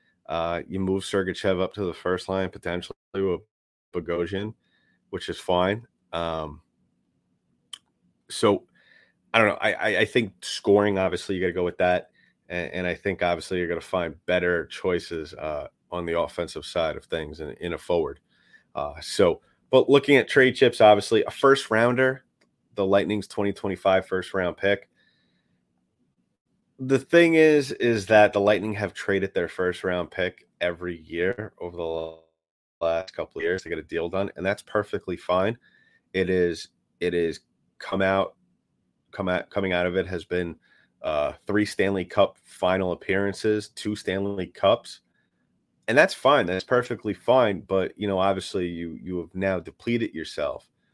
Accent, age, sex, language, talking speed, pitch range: American, 30-49, male, English, 165 wpm, 90-100 Hz